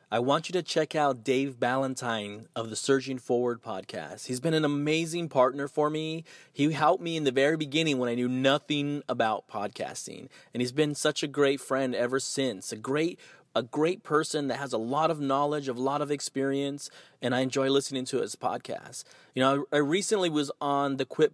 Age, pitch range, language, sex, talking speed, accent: 30-49, 135-160 Hz, English, male, 200 wpm, American